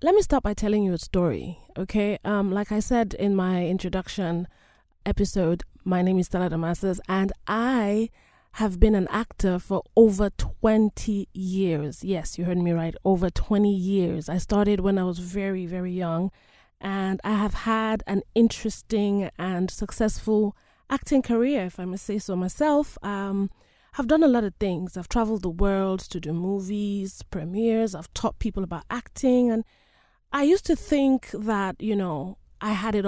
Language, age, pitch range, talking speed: English, 20-39, 185-230 Hz, 170 wpm